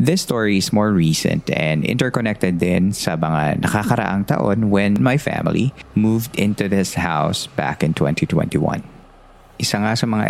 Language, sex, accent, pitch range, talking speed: Filipino, male, native, 90-115 Hz, 150 wpm